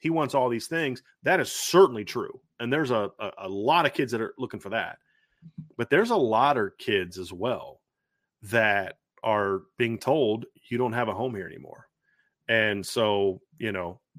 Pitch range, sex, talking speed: 115-145 Hz, male, 190 wpm